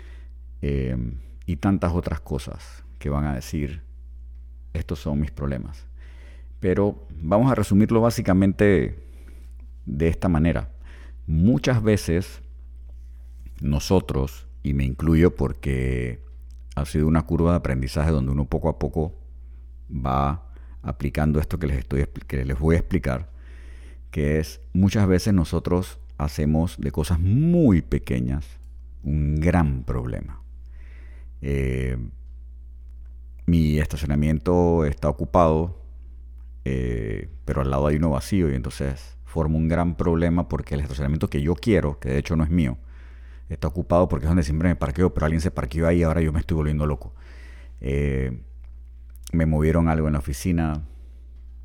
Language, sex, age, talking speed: Spanish, male, 50-69, 135 wpm